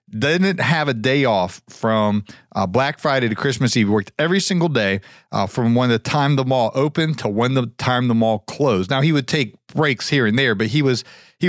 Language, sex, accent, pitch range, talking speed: English, male, American, 115-145 Hz, 225 wpm